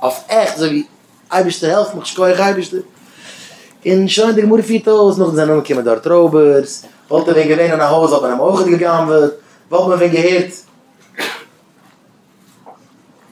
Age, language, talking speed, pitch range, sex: 20-39, English, 190 wpm, 150-175 Hz, male